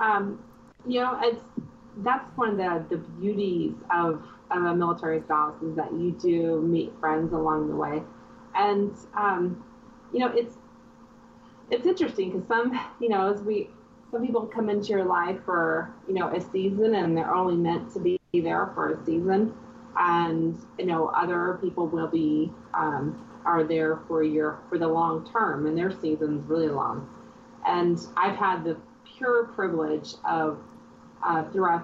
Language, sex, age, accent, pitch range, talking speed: English, female, 30-49, American, 165-235 Hz, 165 wpm